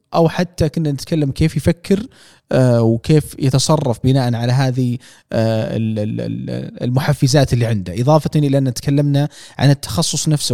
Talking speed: 120 wpm